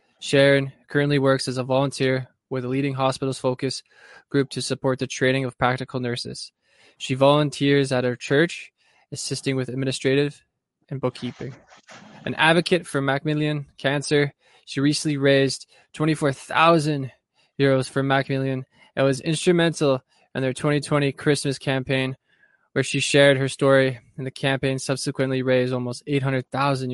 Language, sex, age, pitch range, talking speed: English, male, 20-39, 130-145 Hz, 135 wpm